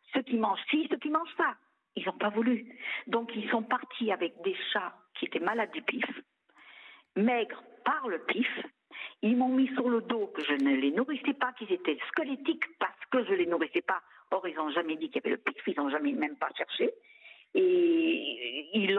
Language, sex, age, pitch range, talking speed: French, female, 50-69, 185-280 Hz, 210 wpm